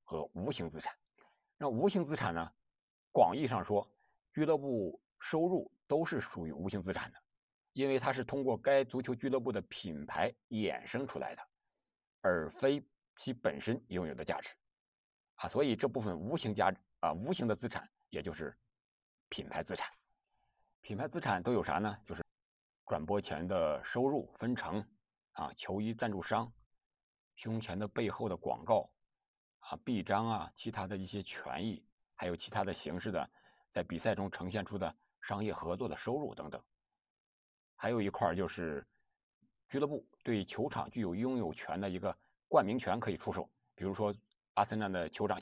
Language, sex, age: Chinese, male, 60-79